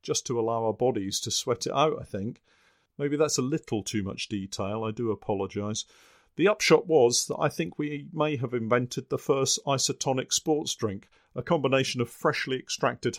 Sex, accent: male, British